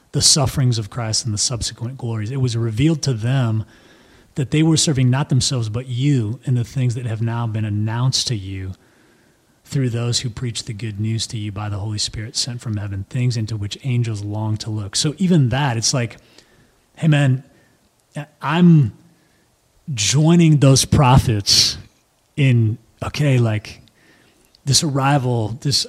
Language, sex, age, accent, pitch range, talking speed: English, male, 30-49, American, 110-135 Hz, 165 wpm